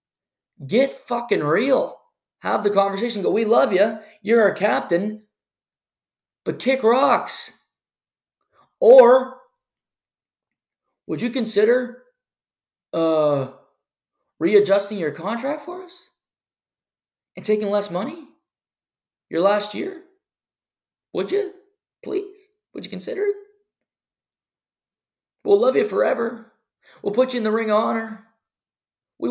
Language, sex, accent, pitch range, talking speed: English, male, American, 175-275 Hz, 110 wpm